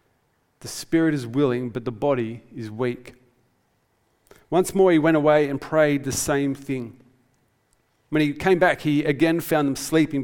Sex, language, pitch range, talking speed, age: male, English, 120-145 Hz, 165 wpm, 40-59